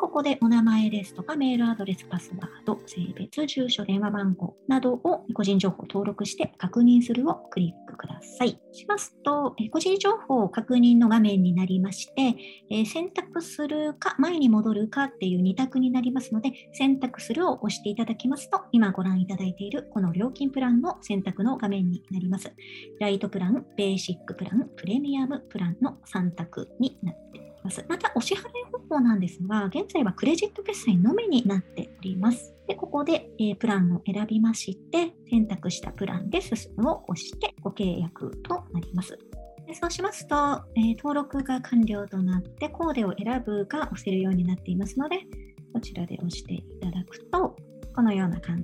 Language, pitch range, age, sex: Japanese, 190-270 Hz, 50-69, male